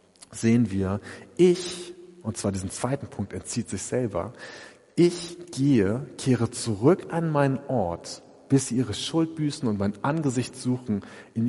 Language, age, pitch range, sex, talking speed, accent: German, 40-59, 110-145 Hz, male, 145 wpm, German